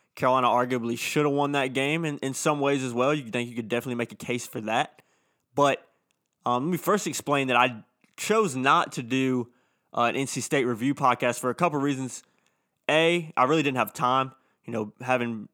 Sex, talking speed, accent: male, 210 wpm, American